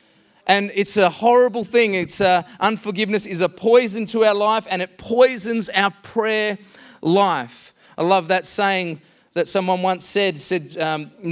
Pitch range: 160-200 Hz